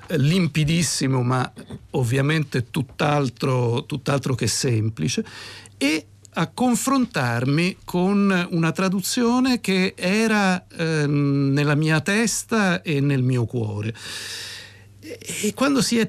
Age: 60-79